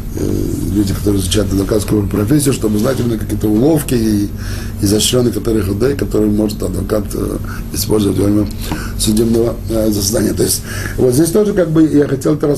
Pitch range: 105-140 Hz